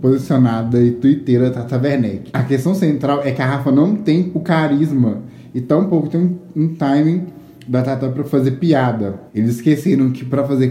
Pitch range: 125-155 Hz